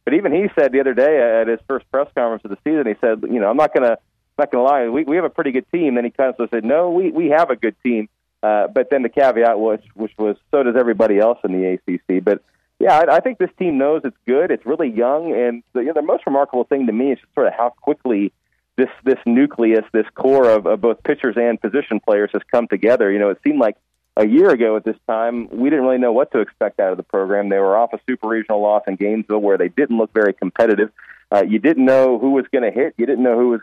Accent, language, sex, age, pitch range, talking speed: American, English, male, 40-59, 110-130 Hz, 275 wpm